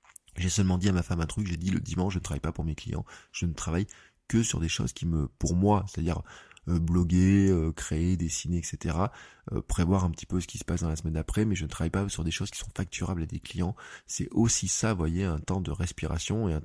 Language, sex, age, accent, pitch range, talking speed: French, male, 20-39, French, 85-100 Hz, 260 wpm